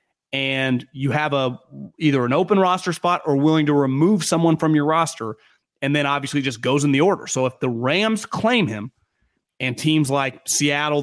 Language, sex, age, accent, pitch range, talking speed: English, male, 30-49, American, 130-170 Hz, 190 wpm